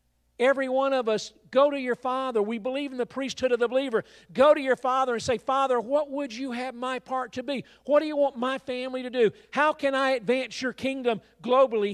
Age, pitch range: 50-69, 165-220 Hz